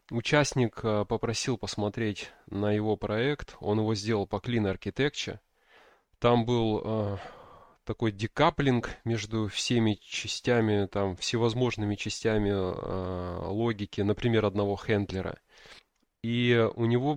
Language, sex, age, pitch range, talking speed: Russian, male, 20-39, 100-120 Hz, 100 wpm